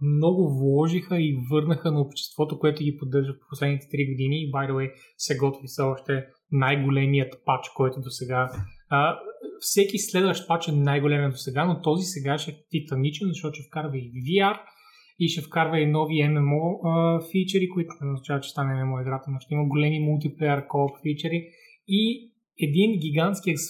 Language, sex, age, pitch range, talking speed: Bulgarian, male, 20-39, 140-175 Hz, 170 wpm